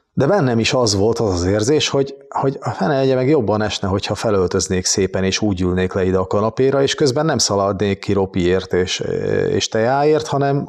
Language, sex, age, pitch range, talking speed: Hungarian, male, 30-49, 105-140 Hz, 195 wpm